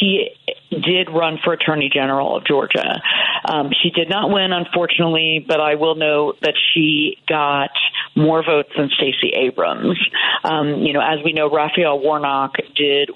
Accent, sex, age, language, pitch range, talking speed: American, female, 40-59, English, 140-175 Hz, 160 wpm